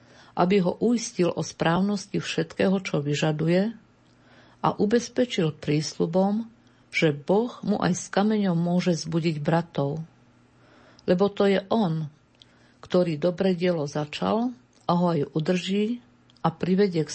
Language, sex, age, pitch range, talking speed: Slovak, female, 50-69, 165-195 Hz, 125 wpm